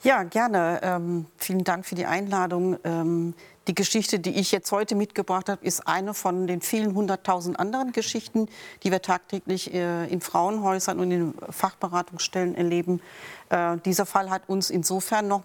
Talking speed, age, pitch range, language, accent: 165 wpm, 40-59, 180-210 Hz, German, German